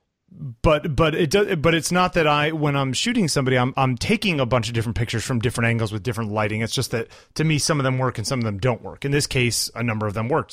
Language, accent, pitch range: English, American, 110-160 Hz